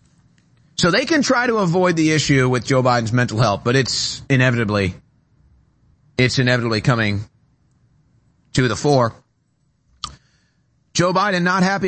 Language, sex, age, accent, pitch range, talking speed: English, male, 30-49, American, 125-155 Hz, 130 wpm